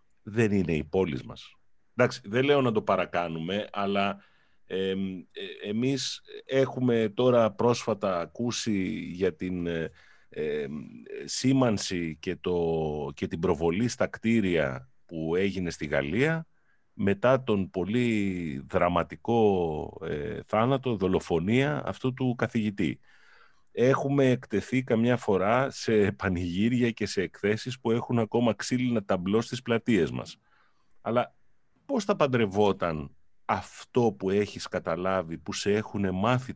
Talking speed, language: 120 wpm, Greek